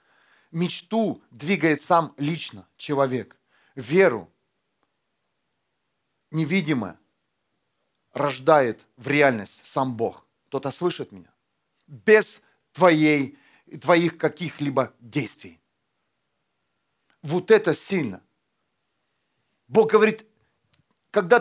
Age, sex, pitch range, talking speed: 40-59, male, 150-235 Hz, 75 wpm